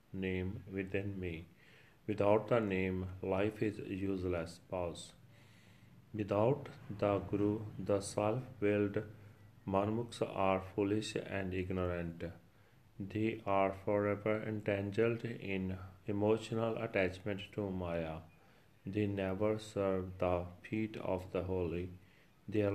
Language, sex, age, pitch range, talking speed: Punjabi, male, 40-59, 95-110 Hz, 105 wpm